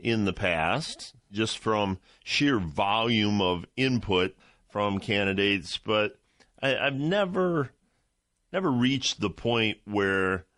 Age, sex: 40-59, male